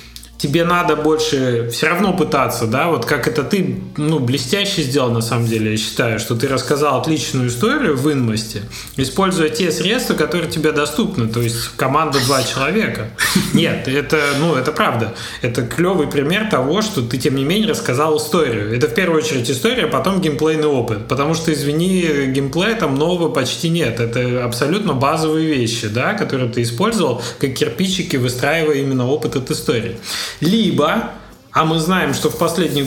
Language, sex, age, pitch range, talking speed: Russian, male, 30-49, 120-155 Hz, 170 wpm